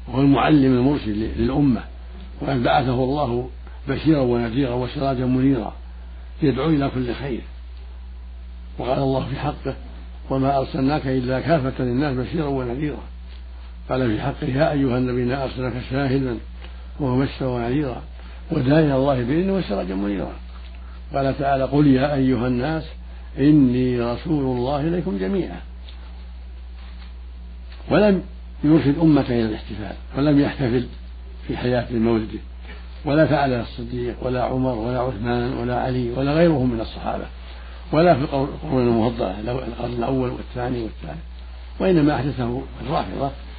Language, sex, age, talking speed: Arabic, male, 60-79, 115 wpm